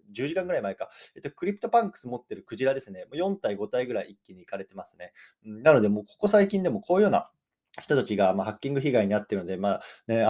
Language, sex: Japanese, male